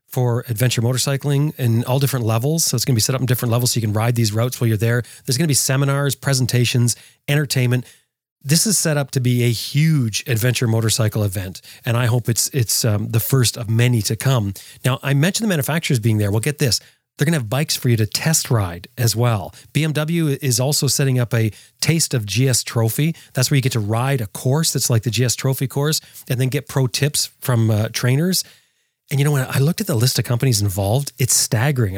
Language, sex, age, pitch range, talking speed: English, male, 30-49, 115-140 Hz, 235 wpm